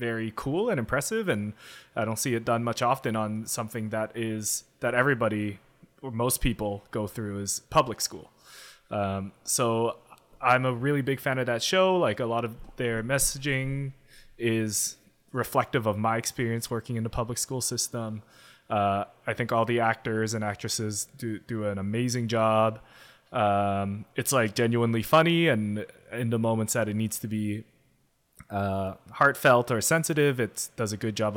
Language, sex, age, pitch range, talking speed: English, male, 20-39, 105-120 Hz, 170 wpm